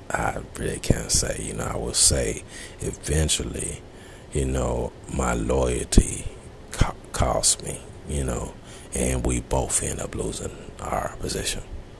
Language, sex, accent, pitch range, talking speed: English, male, American, 65-85 Hz, 135 wpm